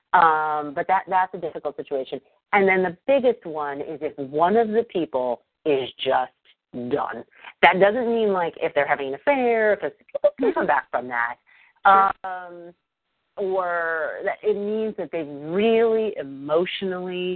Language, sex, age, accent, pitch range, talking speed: English, female, 40-59, American, 140-190 Hz, 155 wpm